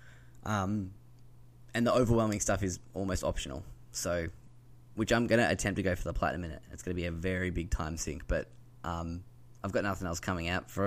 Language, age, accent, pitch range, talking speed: English, 10-29, Australian, 95-120 Hz, 215 wpm